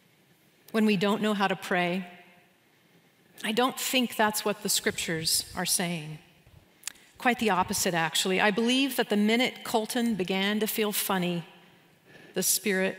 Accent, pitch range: American, 180-220 Hz